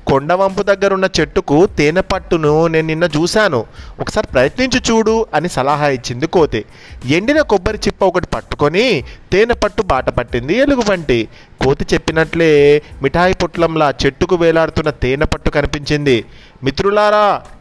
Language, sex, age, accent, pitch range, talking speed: Telugu, male, 30-49, native, 145-195 Hz, 110 wpm